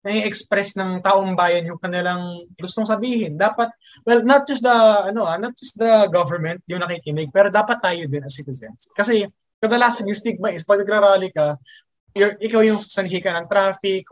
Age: 20-39